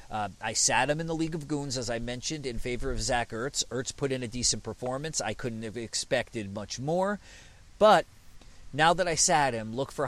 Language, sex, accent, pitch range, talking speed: English, male, American, 110-140 Hz, 220 wpm